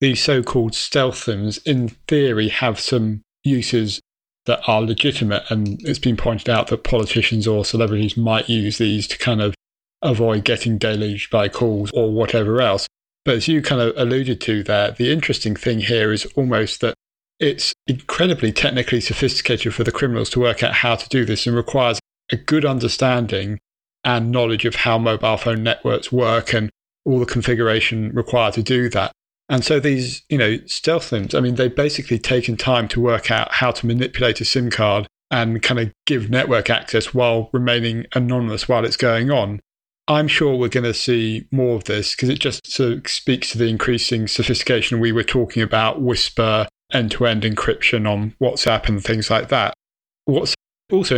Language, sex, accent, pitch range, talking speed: English, male, British, 110-125 Hz, 175 wpm